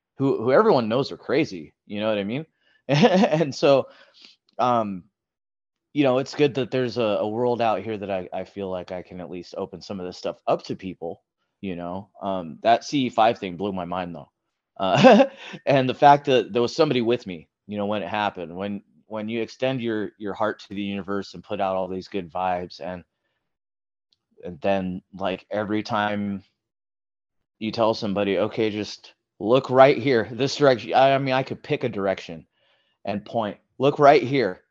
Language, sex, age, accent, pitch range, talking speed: English, male, 30-49, American, 100-125 Hz, 195 wpm